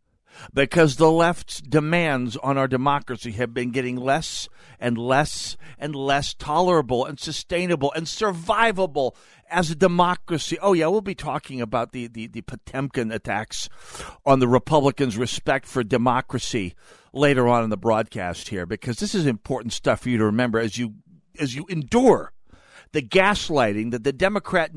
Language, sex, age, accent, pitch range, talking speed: English, male, 50-69, American, 120-165 Hz, 155 wpm